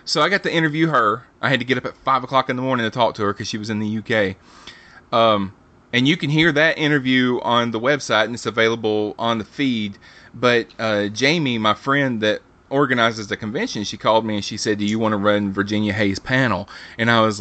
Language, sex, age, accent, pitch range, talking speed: English, male, 30-49, American, 105-140 Hz, 240 wpm